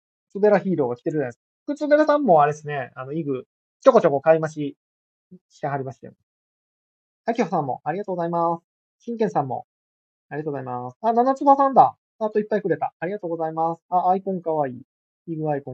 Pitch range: 140-205 Hz